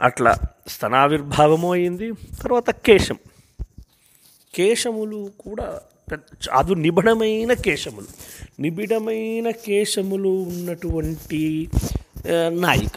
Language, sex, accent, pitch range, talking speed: Telugu, male, native, 140-205 Hz, 65 wpm